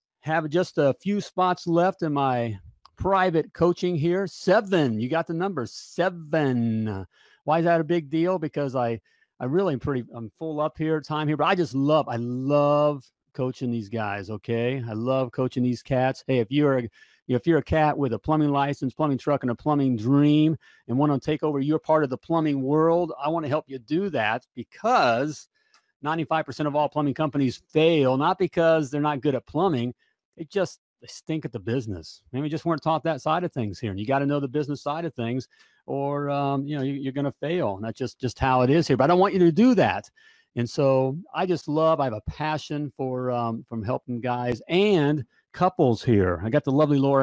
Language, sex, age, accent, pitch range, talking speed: English, male, 40-59, American, 125-160 Hz, 215 wpm